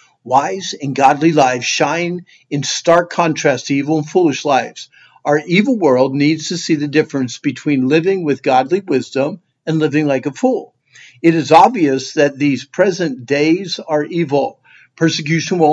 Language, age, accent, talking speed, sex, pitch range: English, 50-69, American, 160 wpm, male, 135-170 Hz